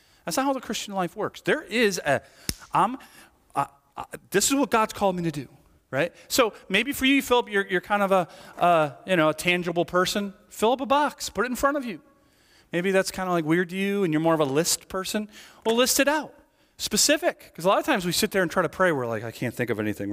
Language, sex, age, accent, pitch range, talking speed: English, male, 40-59, American, 160-230 Hz, 255 wpm